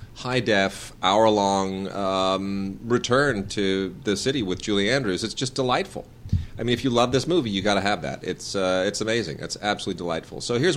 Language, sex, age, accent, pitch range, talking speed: English, male, 40-59, American, 90-110 Hz, 190 wpm